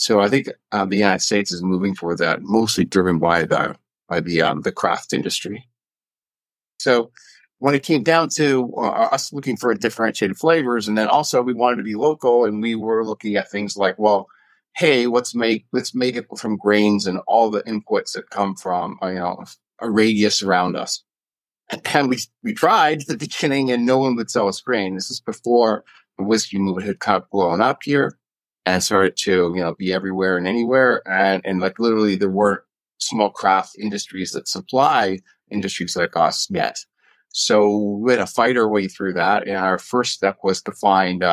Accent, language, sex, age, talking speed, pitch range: American, English, male, 50-69, 200 wpm, 95-120 Hz